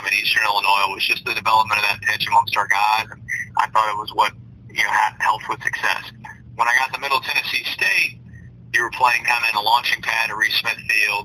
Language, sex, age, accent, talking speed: English, male, 40-59, American, 235 wpm